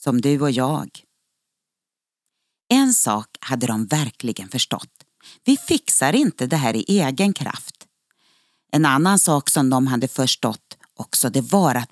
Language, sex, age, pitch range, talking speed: Swedish, female, 40-59, 130-195 Hz, 145 wpm